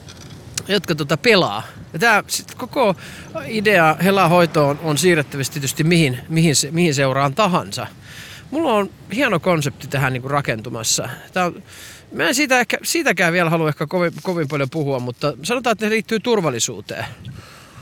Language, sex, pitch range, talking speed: Finnish, male, 135-180 Hz, 150 wpm